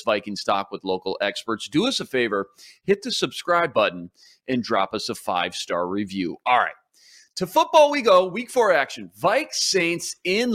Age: 30-49